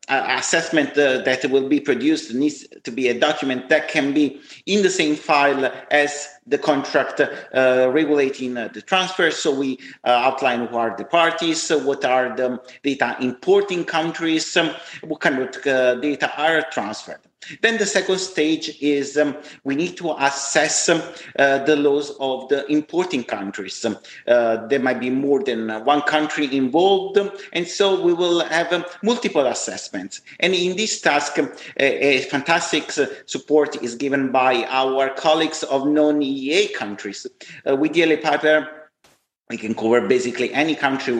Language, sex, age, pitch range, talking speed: Italian, male, 50-69, 135-170 Hz, 160 wpm